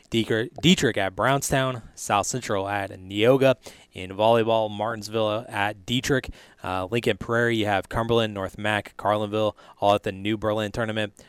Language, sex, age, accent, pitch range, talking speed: English, male, 20-39, American, 95-115 Hz, 145 wpm